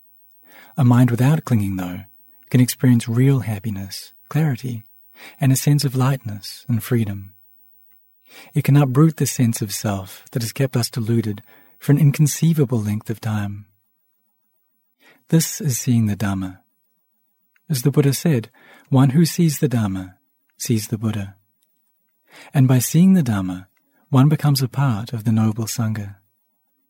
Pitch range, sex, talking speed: 110-150 Hz, male, 145 wpm